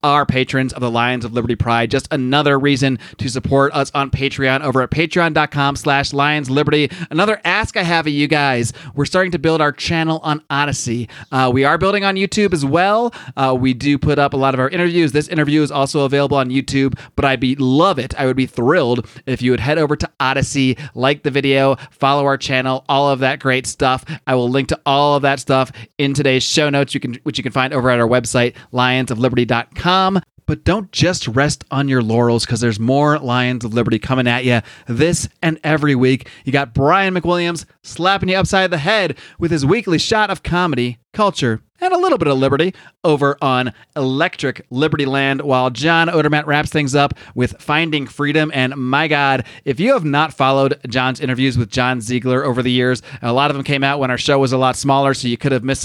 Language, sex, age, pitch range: English, male, 30-49, 130-150 Hz